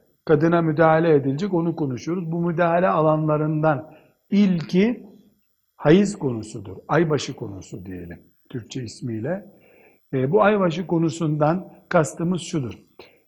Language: Turkish